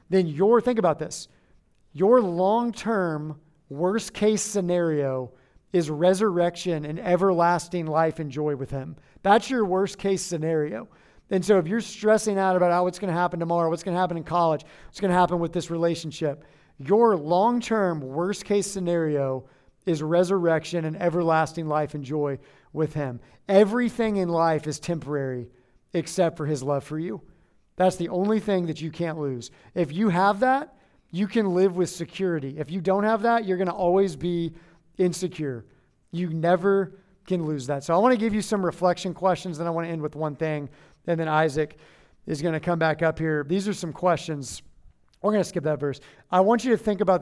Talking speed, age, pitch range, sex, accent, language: 190 wpm, 50-69, 155-190 Hz, male, American, English